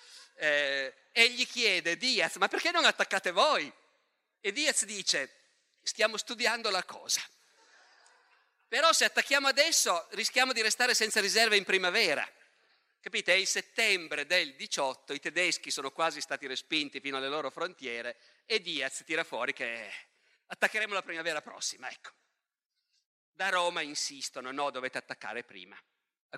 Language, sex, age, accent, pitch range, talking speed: Italian, male, 50-69, native, 160-255 Hz, 140 wpm